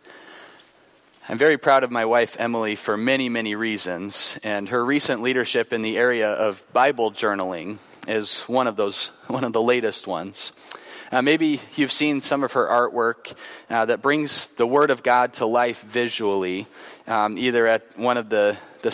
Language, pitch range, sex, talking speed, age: English, 115-140 Hz, male, 175 wpm, 30-49